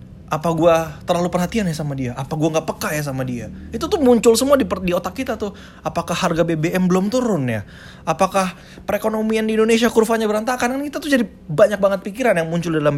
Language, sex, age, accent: Indonesian, male, 20-39, native